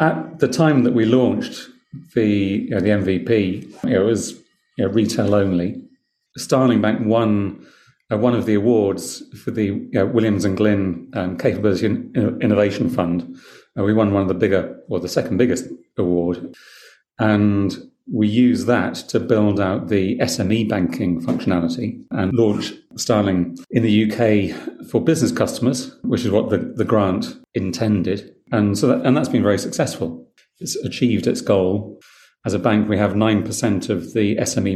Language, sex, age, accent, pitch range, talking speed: English, male, 40-59, British, 95-115 Hz, 170 wpm